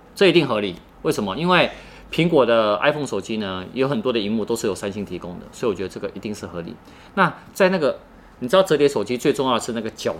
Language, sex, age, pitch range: Chinese, male, 30-49, 90-115 Hz